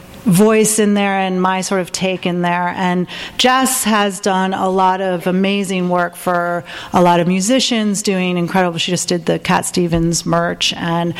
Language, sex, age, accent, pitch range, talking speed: English, female, 40-59, American, 175-210 Hz, 180 wpm